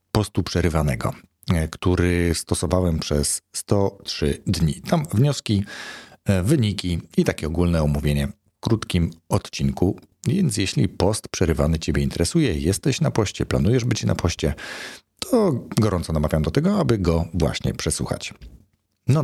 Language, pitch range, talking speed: Polish, 85-120 Hz, 125 wpm